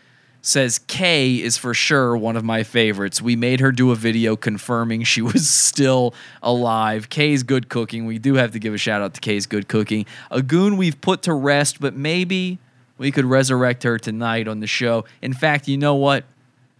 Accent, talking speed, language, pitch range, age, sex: American, 200 wpm, English, 110-140 Hz, 20-39, male